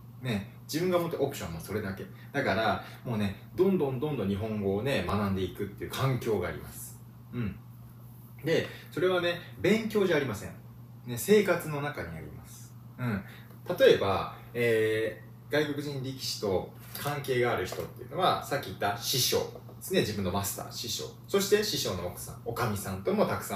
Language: Japanese